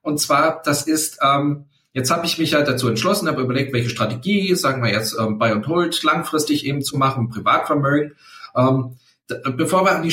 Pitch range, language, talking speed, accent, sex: 125-160 Hz, German, 200 wpm, German, male